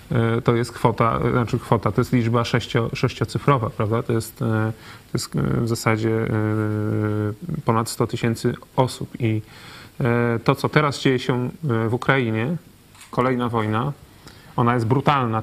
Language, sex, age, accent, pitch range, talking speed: Polish, male, 30-49, native, 115-135 Hz, 130 wpm